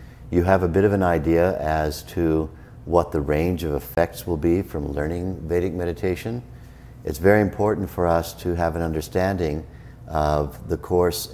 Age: 50-69